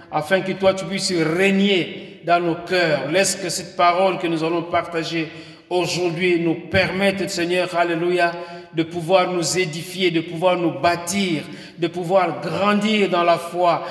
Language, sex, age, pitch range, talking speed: French, male, 50-69, 165-195 Hz, 155 wpm